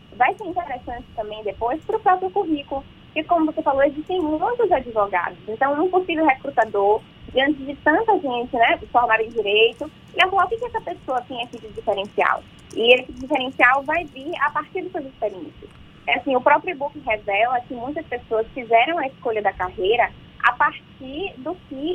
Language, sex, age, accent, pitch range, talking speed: Portuguese, female, 20-39, Brazilian, 230-330 Hz, 180 wpm